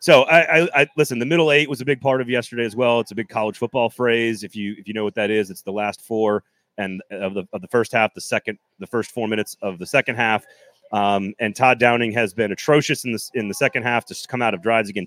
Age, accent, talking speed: 30-49, American, 280 wpm